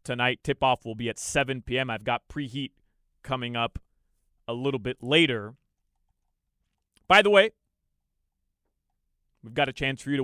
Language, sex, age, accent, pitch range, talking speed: English, male, 30-49, American, 130-180 Hz, 160 wpm